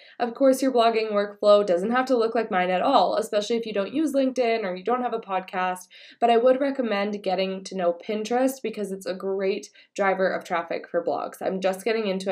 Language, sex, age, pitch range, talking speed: English, female, 20-39, 180-225 Hz, 225 wpm